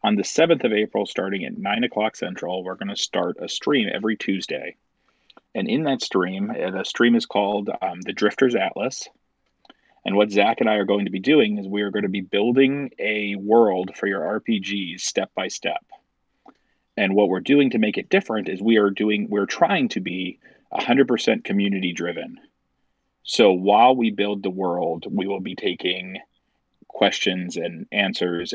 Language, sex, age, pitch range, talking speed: English, male, 30-49, 95-110 Hz, 185 wpm